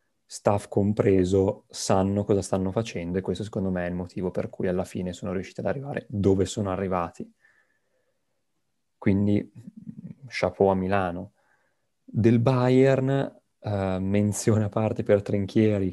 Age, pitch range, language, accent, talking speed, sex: 30-49, 95-110 Hz, Italian, native, 135 wpm, male